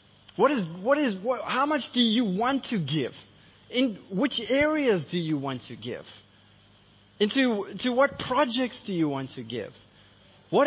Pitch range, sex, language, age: 155-235 Hz, male, English, 20-39